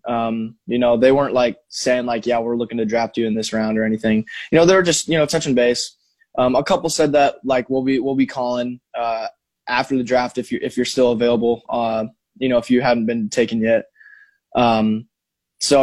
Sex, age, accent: male, 20-39, American